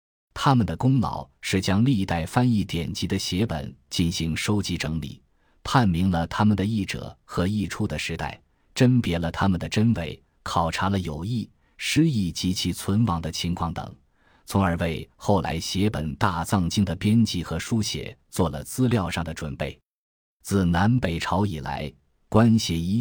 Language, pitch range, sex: Chinese, 85-105 Hz, male